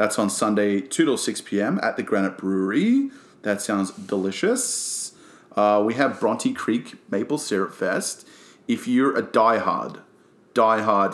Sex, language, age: male, English, 30-49